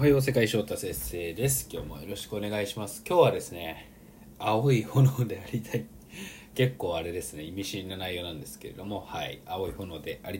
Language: Japanese